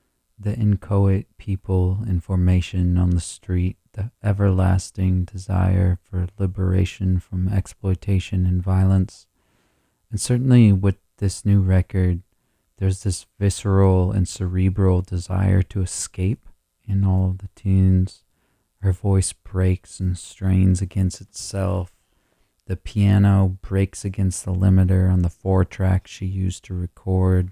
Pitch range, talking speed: 90-100 Hz, 120 wpm